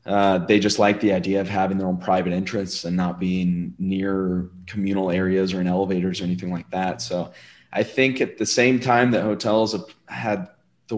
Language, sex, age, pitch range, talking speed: English, male, 20-39, 95-110 Hz, 200 wpm